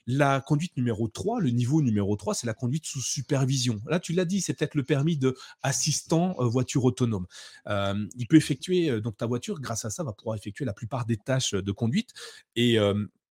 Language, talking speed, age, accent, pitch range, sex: French, 200 wpm, 30-49, French, 100-125 Hz, male